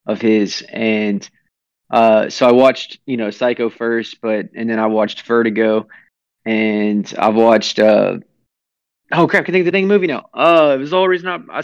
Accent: American